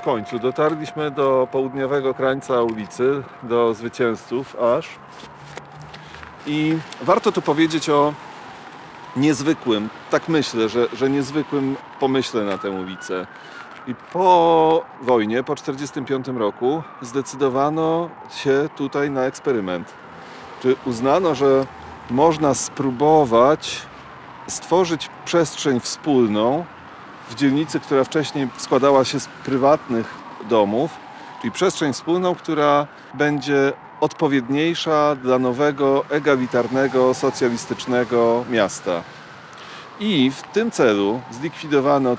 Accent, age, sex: native, 40-59, male